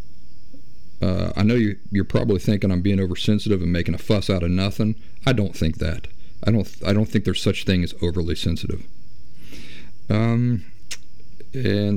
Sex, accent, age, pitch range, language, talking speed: male, American, 50-69, 90-105 Hz, English, 175 wpm